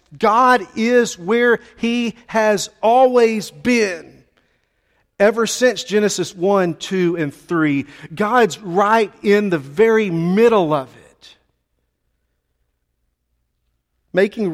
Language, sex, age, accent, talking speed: English, male, 50-69, American, 95 wpm